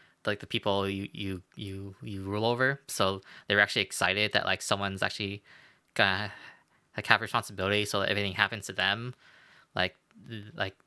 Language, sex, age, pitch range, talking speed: English, male, 20-39, 100-120 Hz, 165 wpm